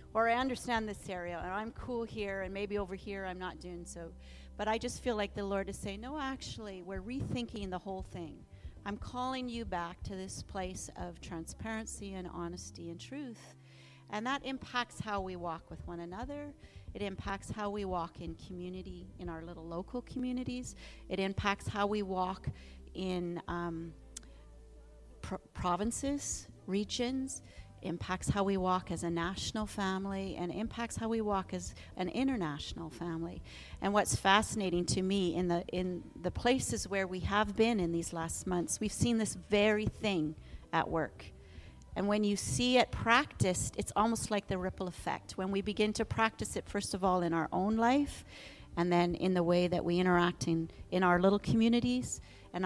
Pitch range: 170-210 Hz